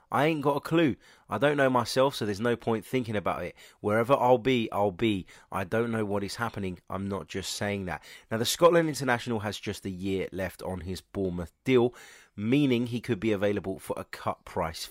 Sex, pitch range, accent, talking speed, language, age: male, 95-125 Hz, British, 215 wpm, English, 30-49